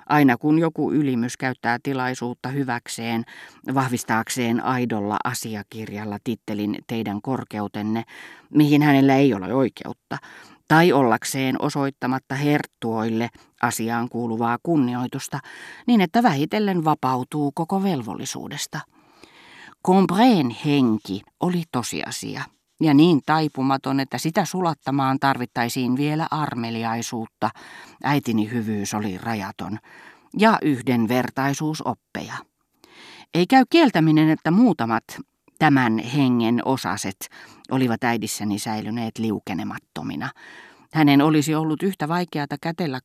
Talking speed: 95 wpm